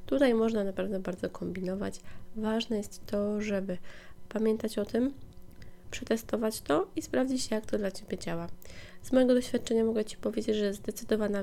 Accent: native